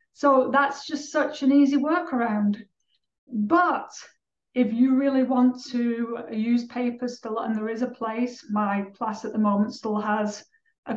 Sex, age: female, 30-49